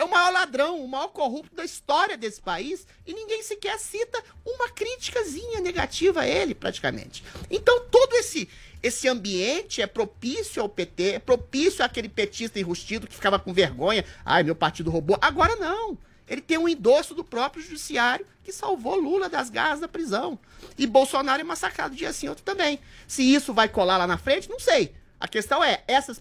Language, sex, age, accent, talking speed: Portuguese, male, 30-49, Brazilian, 185 wpm